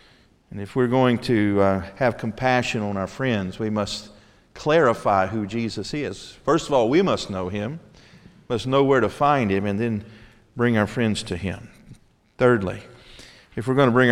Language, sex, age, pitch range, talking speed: English, male, 50-69, 110-145 Hz, 185 wpm